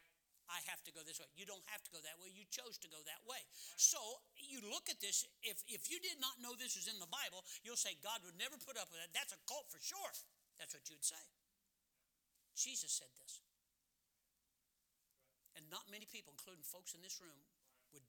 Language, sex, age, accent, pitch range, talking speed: English, male, 60-79, American, 145-195 Hz, 220 wpm